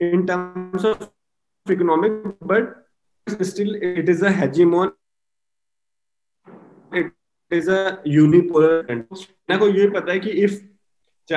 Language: Hindi